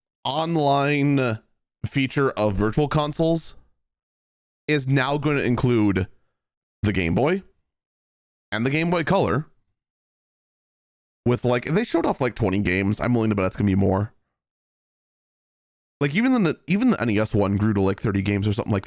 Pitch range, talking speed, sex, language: 100-130 Hz, 160 wpm, male, English